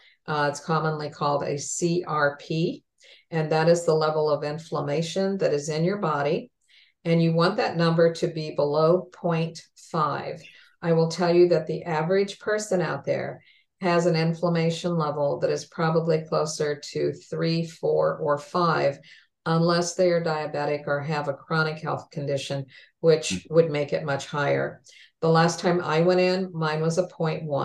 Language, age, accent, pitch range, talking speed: English, 50-69, American, 150-175 Hz, 165 wpm